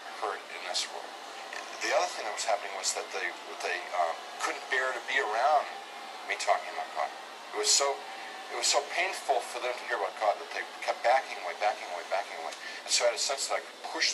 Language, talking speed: English, 220 wpm